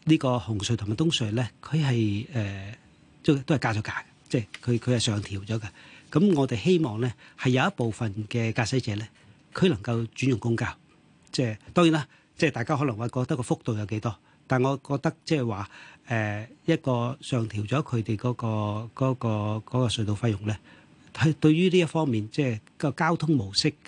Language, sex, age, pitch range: Chinese, male, 40-59, 110-150 Hz